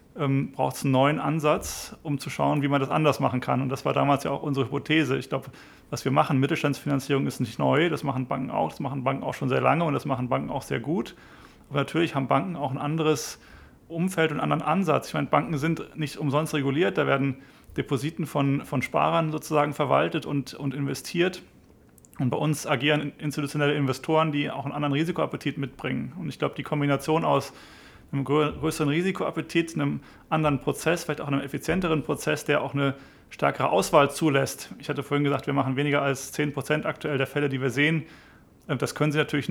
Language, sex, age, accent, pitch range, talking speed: German, male, 30-49, German, 140-155 Hz, 205 wpm